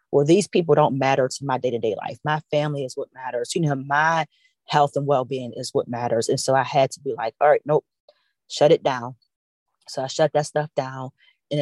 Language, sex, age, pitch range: English, female, 30-49, 130-150 Hz